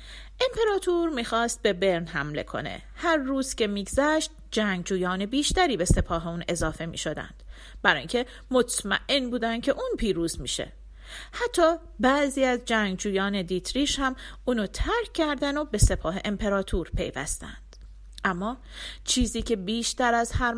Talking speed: 130 wpm